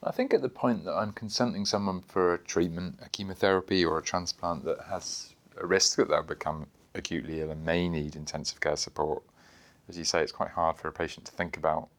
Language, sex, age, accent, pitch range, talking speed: English, male, 30-49, British, 85-95 Hz, 220 wpm